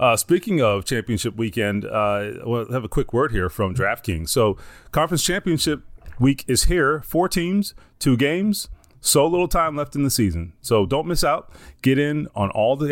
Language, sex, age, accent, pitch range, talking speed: English, male, 30-49, American, 110-145 Hz, 185 wpm